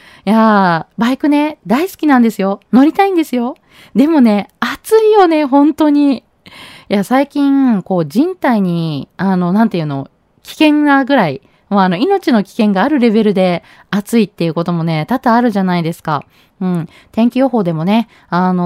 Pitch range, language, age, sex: 190-275 Hz, Japanese, 20-39, female